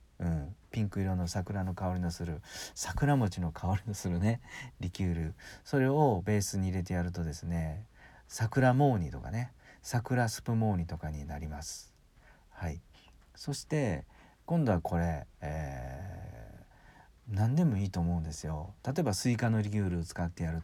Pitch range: 85-105 Hz